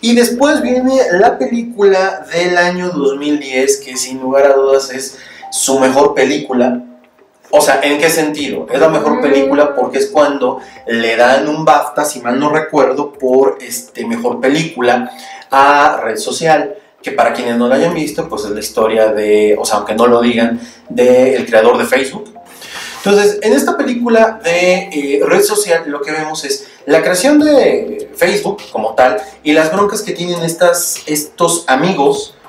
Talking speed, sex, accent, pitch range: 170 wpm, male, Mexican, 130-195 Hz